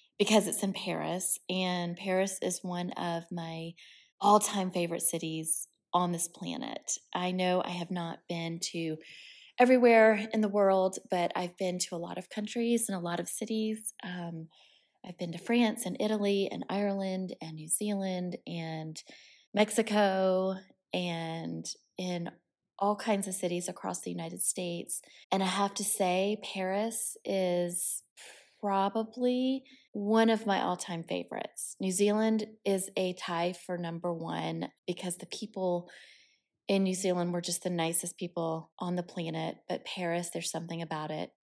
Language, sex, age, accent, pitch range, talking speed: English, female, 20-39, American, 175-200 Hz, 150 wpm